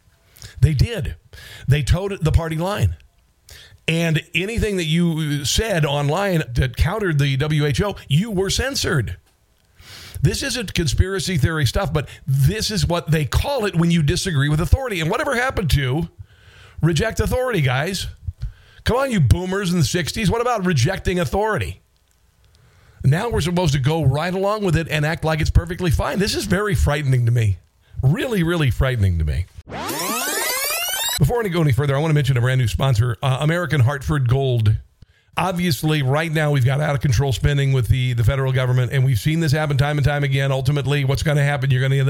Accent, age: American, 50-69